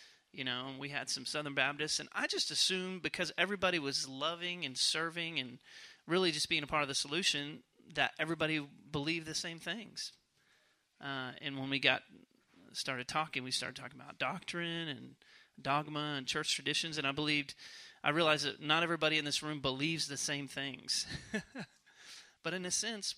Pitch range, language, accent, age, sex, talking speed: 135-165 Hz, English, American, 30-49, male, 175 wpm